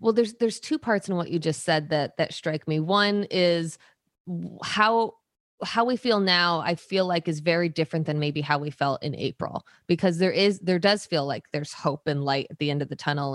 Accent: American